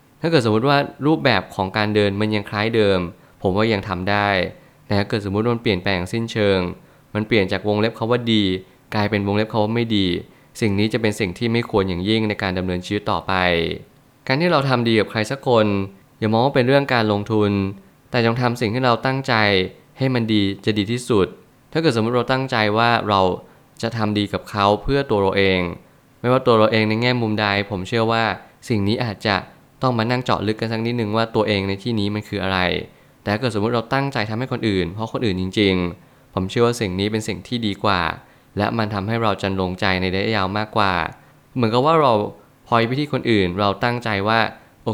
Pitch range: 100-120 Hz